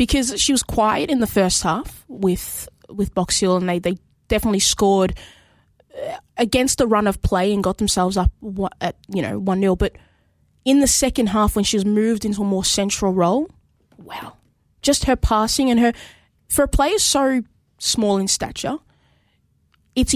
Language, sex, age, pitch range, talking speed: English, female, 20-39, 190-225 Hz, 165 wpm